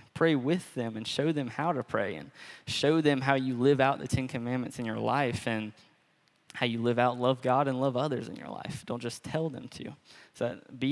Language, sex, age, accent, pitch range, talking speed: English, male, 20-39, American, 120-135 Hz, 230 wpm